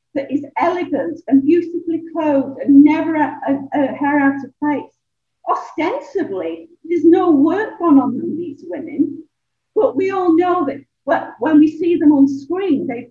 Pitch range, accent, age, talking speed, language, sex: 280-340 Hz, British, 50-69, 170 wpm, English, female